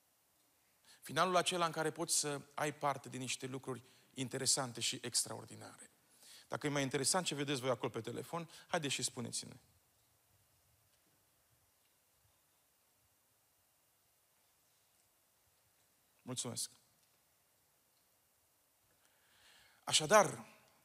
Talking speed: 85 wpm